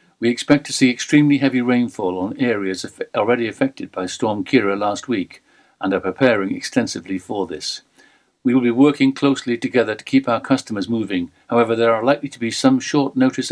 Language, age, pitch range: English, 50-69, 100-135 Hz